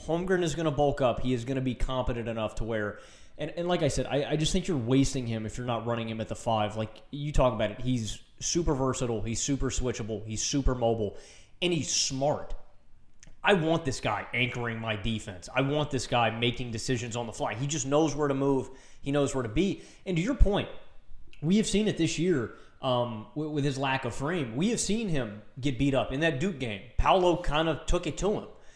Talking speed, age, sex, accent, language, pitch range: 240 wpm, 20-39, male, American, English, 120-155 Hz